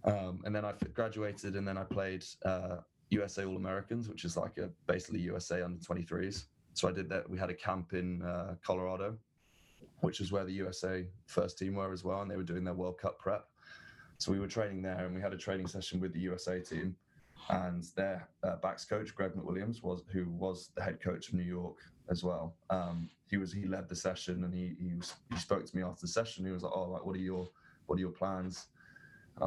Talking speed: 230 wpm